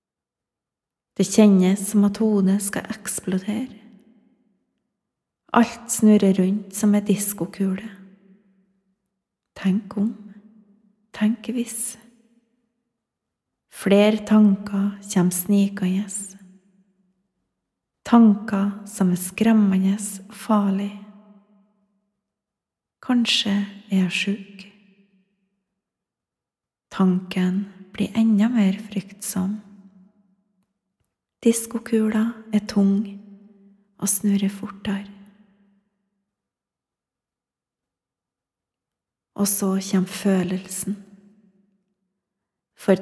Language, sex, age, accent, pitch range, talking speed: English, female, 30-49, Swedish, 195-210 Hz, 65 wpm